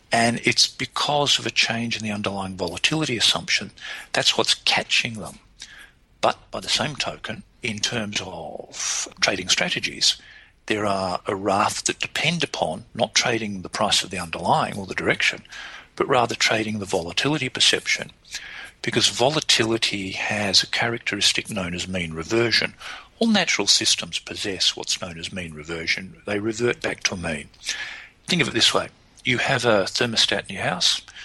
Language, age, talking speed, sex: English, 50-69, 160 wpm, male